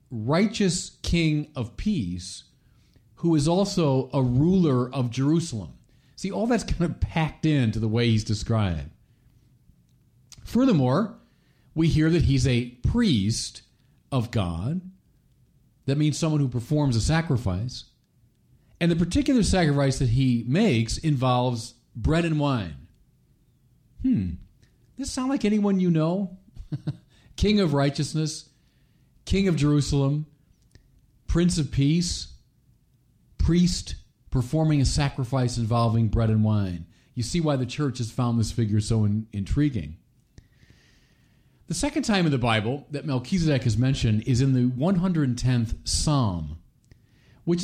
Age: 40-59